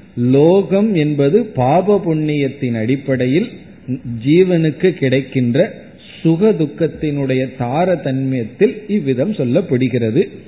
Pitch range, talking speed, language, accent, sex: 130-180 Hz, 70 wpm, Tamil, native, male